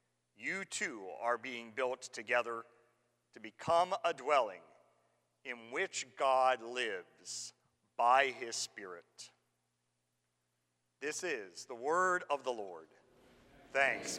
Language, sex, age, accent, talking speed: English, male, 40-59, American, 105 wpm